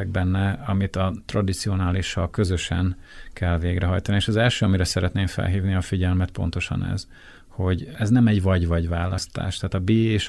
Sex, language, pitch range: male, Hungarian, 85-100 Hz